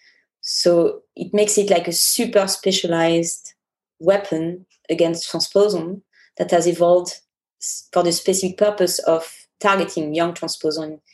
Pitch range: 160-190 Hz